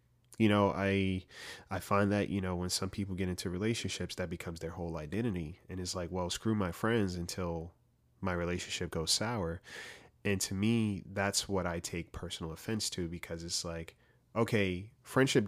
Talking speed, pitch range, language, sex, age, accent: 180 wpm, 90-110 Hz, English, male, 30-49, American